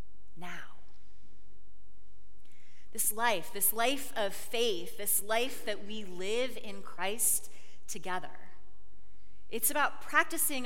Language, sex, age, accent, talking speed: English, female, 30-49, American, 100 wpm